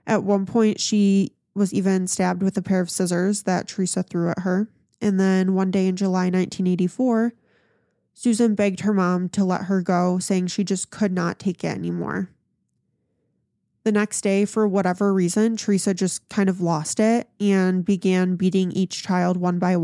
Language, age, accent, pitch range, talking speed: English, 20-39, American, 185-210 Hz, 180 wpm